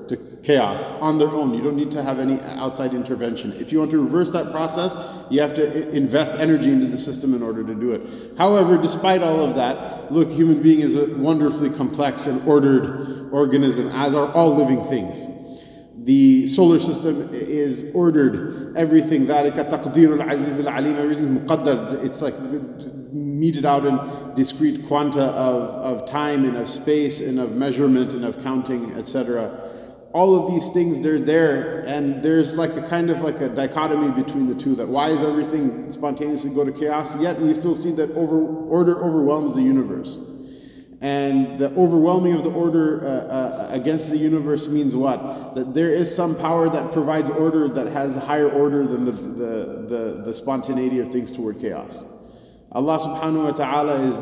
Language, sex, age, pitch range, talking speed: English, male, 30-49, 135-160 Hz, 170 wpm